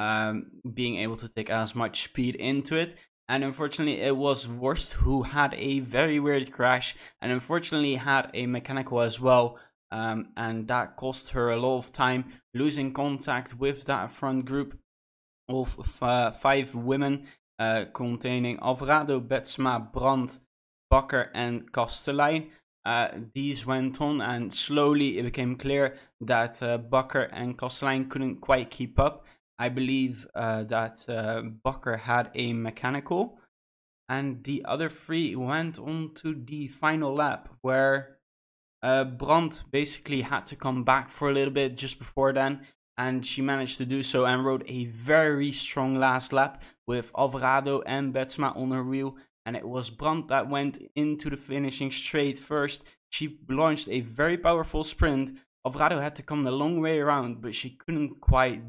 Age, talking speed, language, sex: 20-39, 160 wpm, English, male